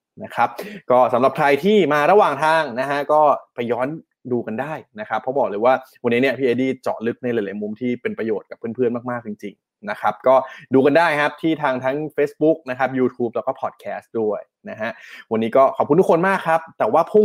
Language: Thai